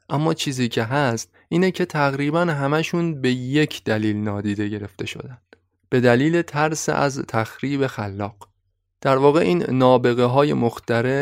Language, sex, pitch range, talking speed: Persian, male, 110-150 Hz, 135 wpm